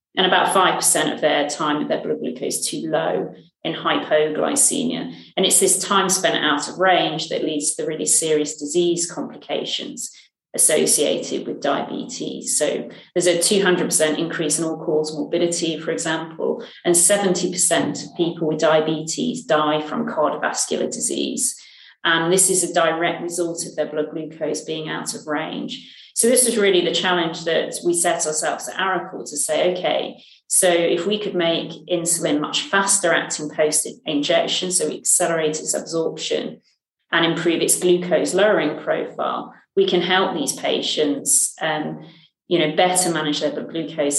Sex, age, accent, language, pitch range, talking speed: female, 40-59, British, English, 155-180 Hz, 155 wpm